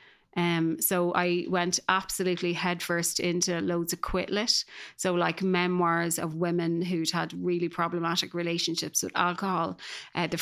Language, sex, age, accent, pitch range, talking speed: English, female, 30-49, Irish, 165-185 Hz, 140 wpm